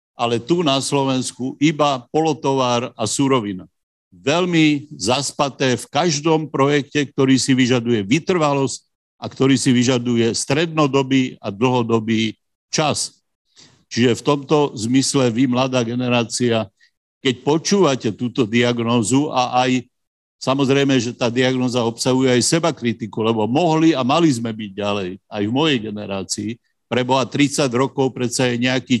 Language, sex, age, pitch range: Slovak, male, 50-69, 120-145 Hz